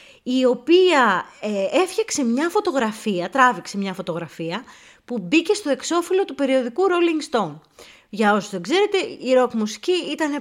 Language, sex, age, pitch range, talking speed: Greek, female, 30-49, 190-275 Hz, 145 wpm